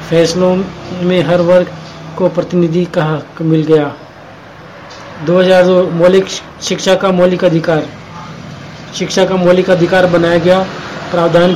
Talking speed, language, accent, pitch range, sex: 105 wpm, Hindi, native, 165-180 Hz, male